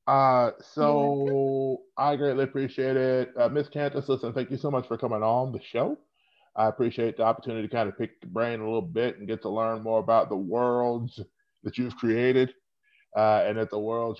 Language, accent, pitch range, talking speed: English, American, 100-115 Hz, 205 wpm